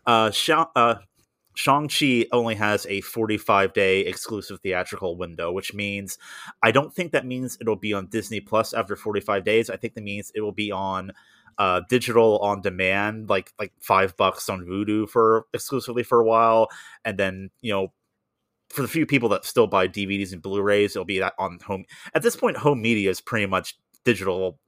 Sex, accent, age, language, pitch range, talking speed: male, American, 30-49, English, 100-125 Hz, 190 wpm